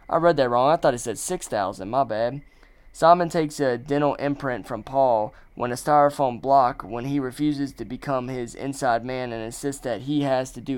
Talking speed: 205 wpm